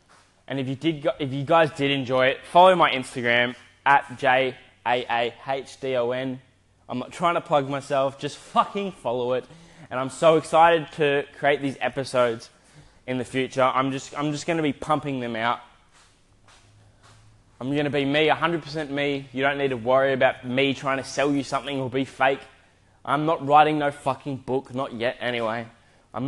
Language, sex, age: English, male, 10-29